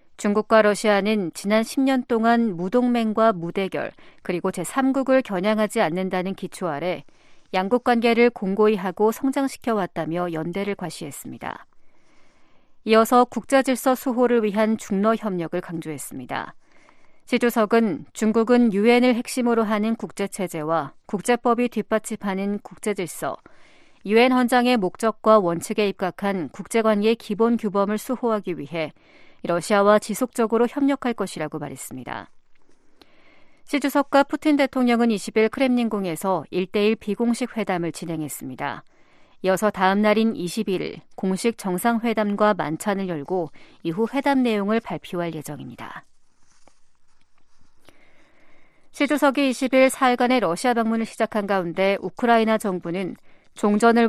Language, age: Korean, 40-59